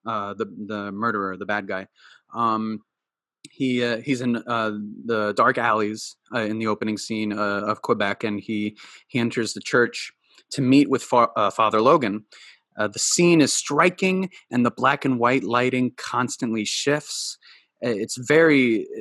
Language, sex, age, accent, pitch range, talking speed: English, male, 30-49, American, 105-125 Hz, 165 wpm